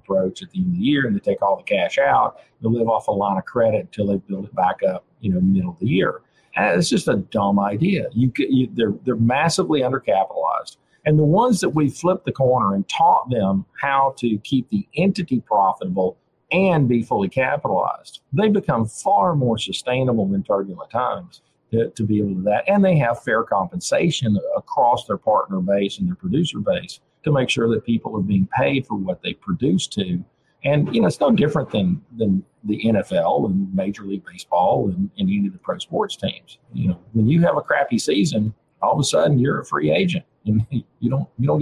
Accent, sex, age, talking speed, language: American, male, 50-69, 215 wpm, English